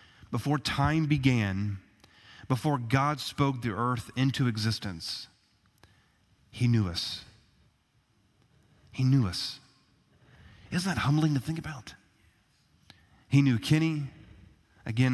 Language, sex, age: English, male, 30-49